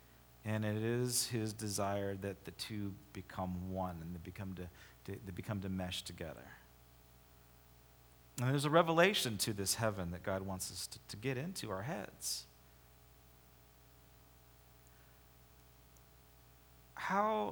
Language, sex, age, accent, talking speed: English, male, 40-59, American, 125 wpm